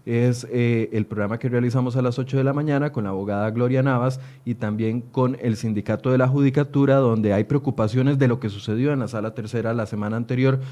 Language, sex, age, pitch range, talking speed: Spanish, male, 30-49, 115-140 Hz, 220 wpm